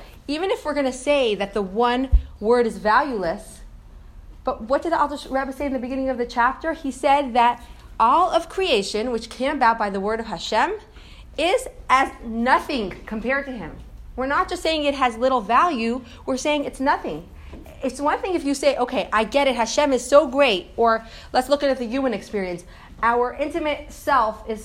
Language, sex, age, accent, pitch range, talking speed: English, female, 30-49, American, 200-280 Hz, 200 wpm